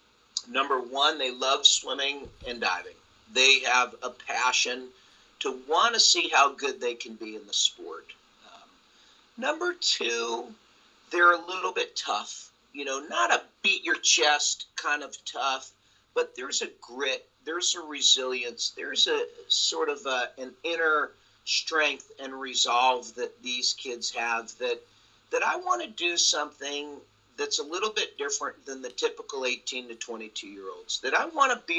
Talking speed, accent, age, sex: 160 wpm, American, 50-69, male